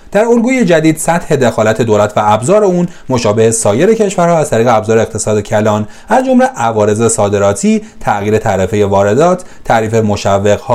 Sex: male